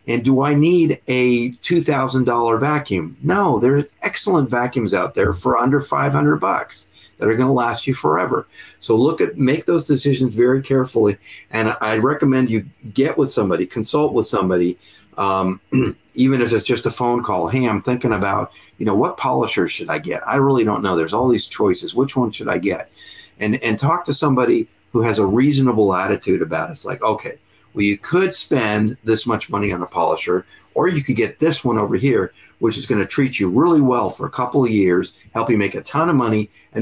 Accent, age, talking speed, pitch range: American, 50-69, 210 wpm, 105-135 Hz